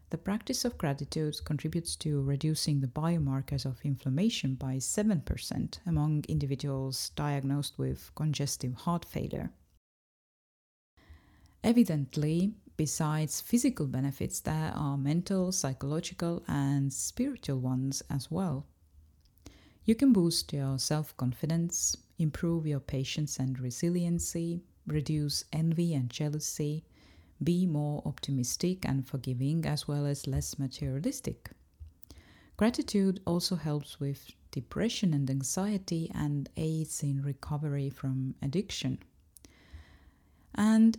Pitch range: 130-170 Hz